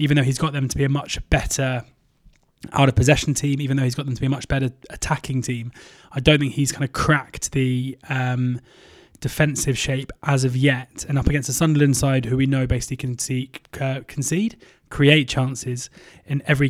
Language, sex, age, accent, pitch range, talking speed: English, male, 20-39, British, 130-140 Hz, 200 wpm